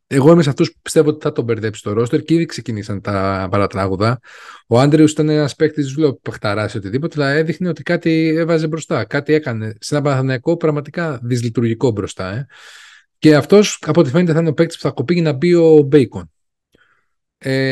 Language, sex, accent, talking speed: Greek, male, native, 200 wpm